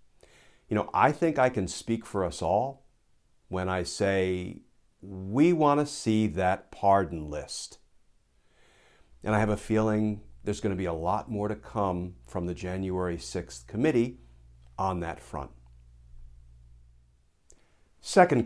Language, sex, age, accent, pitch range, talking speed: English, male, 50-69, American, 90-135 Hz, 135 wpm